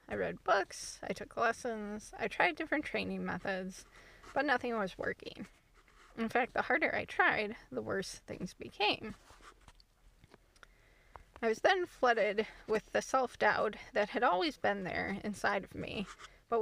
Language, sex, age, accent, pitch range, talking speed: English, female, 10-29, American, 195-235 Hz, 150 wpm